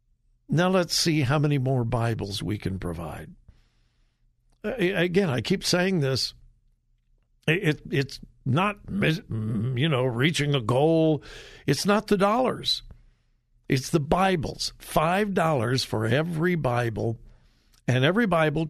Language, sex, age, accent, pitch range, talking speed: English, male, 60-79, American, 120-170 Hz, 120 wpm